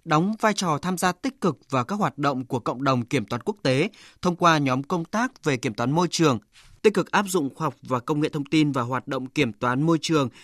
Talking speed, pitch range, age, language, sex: 265 wpm, 135-175 Hz, 20-39, Vietnamese, male